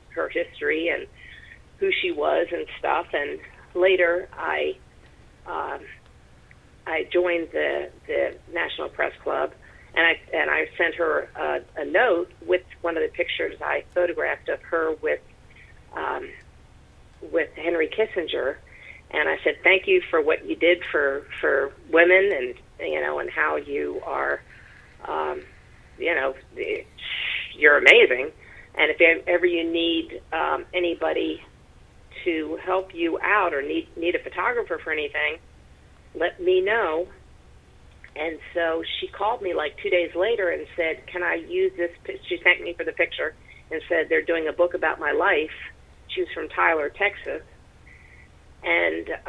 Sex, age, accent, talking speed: female, 40-59, American, 150 wpm